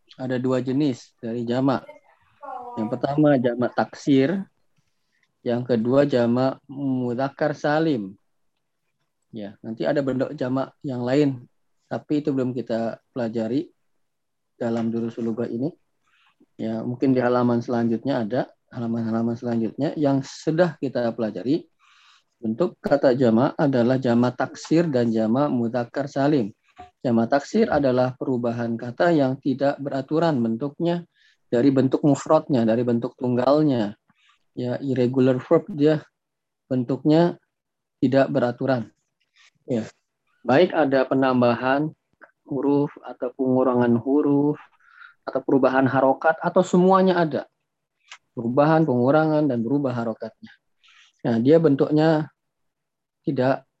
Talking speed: 110 wpm